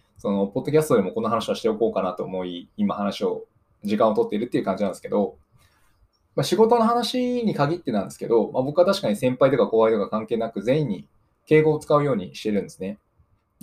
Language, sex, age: Japanese, male, 20-39